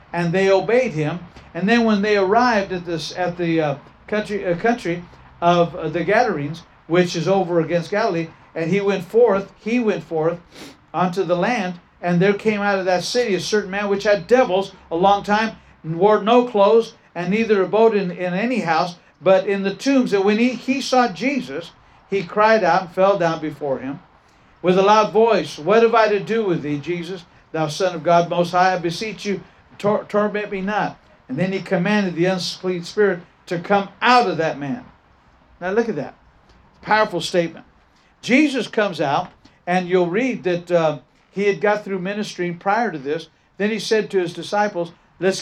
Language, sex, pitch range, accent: English, male, 175-210 Hz, American